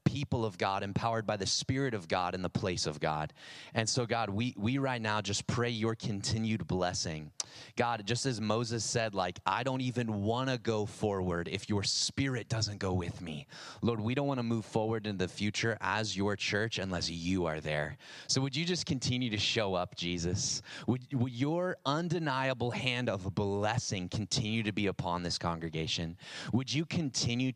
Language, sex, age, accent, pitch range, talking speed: English, male, 30-49, American, 105-140 Hz, 190 wpm